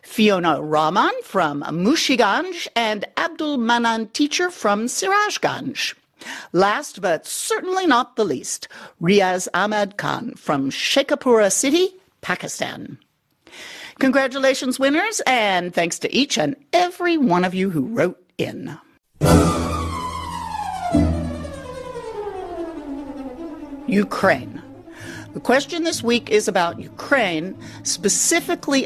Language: English